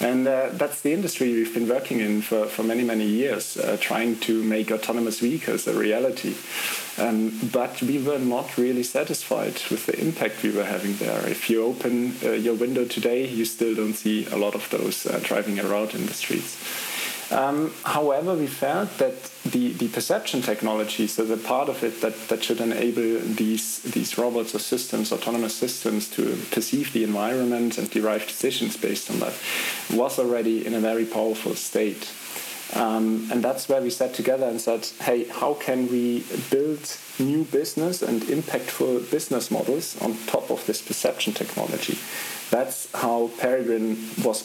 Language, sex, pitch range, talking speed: English, male, 110-130 Hz, 175 wpm